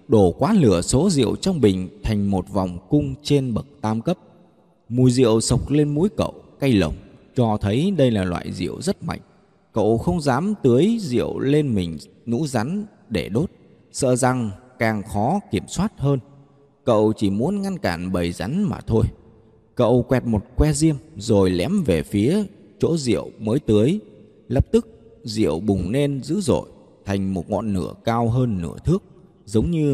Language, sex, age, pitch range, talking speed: Vietnamese, male, 20-39, 95-140 Hz, 175 wpm